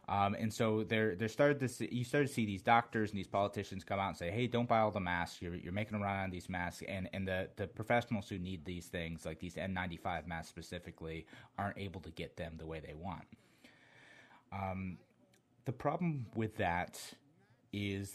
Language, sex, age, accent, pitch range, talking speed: English, male, 30-49, American, 95-115 Hz, 210 wpm